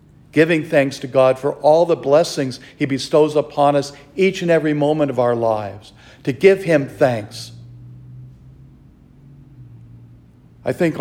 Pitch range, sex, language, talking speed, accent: 120-150 Hz, male, English, 135 wpm, American